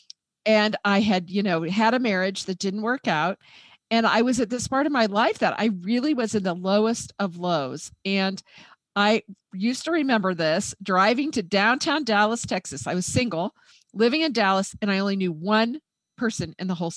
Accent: American